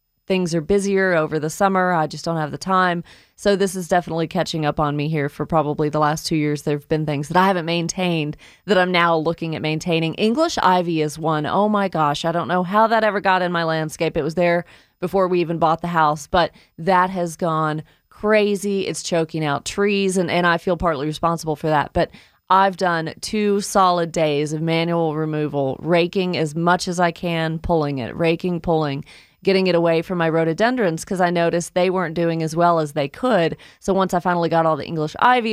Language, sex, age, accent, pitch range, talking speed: English, female, 30-49, American, 160-190 Hz, 220 wpm